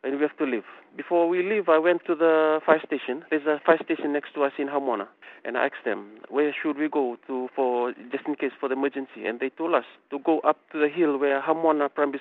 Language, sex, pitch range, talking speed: English, male, 135-155 Hz, 255 wpm